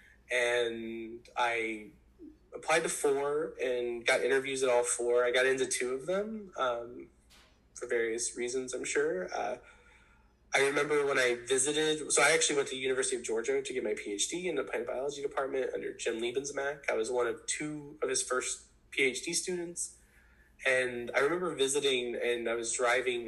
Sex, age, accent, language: male, 20-39, American, English